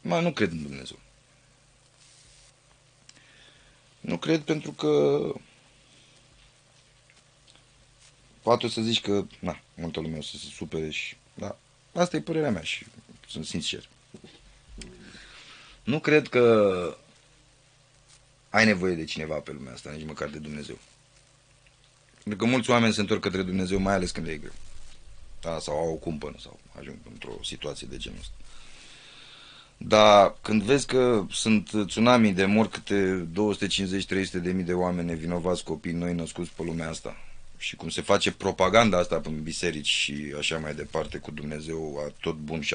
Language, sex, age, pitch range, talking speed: Romanian, male, 30-49, 85-135 Hz, 145 wpm